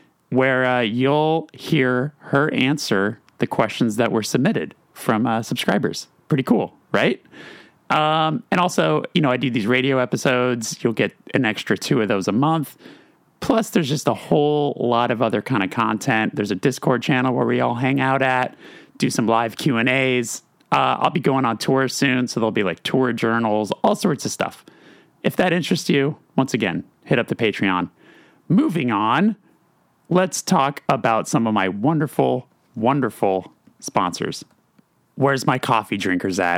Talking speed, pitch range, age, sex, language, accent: 170 wpm, 110-140 Hz, 30-49, male, English, American